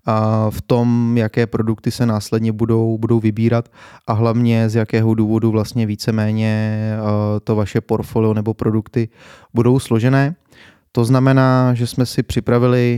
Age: 20-39